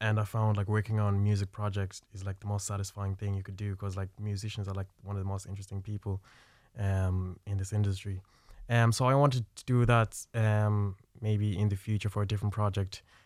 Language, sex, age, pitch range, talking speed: English, male, 20-39, 100-110 Hz, 215 wpm